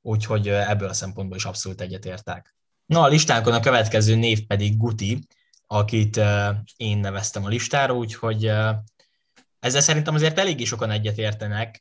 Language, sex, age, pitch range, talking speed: Hungarian, male, 10-29, 105-120 Hz, 140 wpm